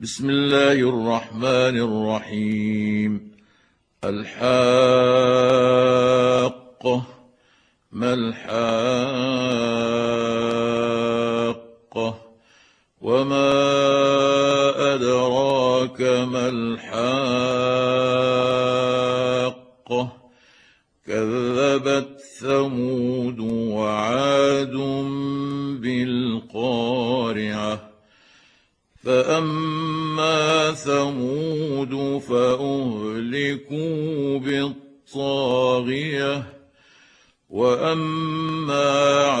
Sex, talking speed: male, 30 wpm